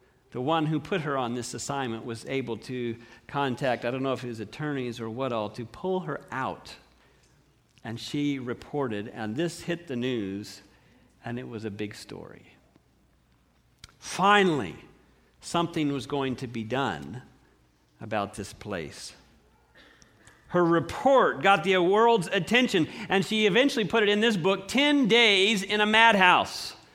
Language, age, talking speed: English, 50-69, 150 wpm